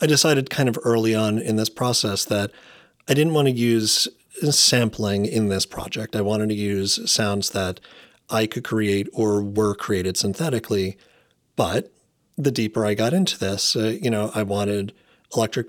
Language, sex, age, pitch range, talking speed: English, male, 40-59, 100-120 Hz, 170 wpm